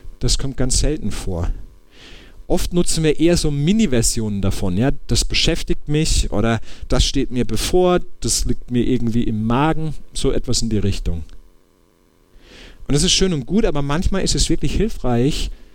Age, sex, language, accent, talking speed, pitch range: 50-69, male, English, German, 165 wpm, 100-155 Hz